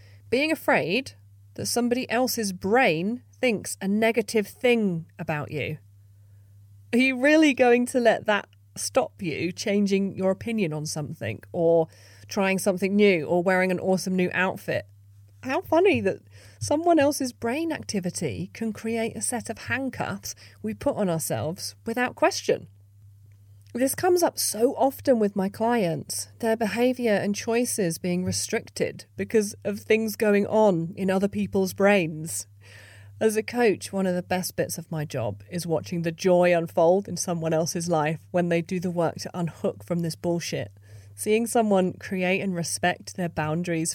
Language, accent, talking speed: English, British, 155 wpm